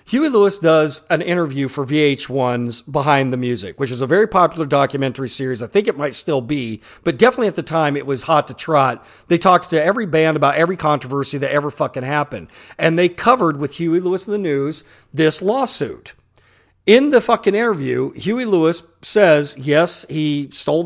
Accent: American